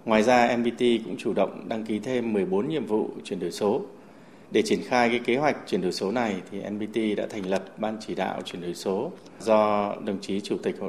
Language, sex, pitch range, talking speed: Vietnamese, male, 105-120 Hz, 230 wpm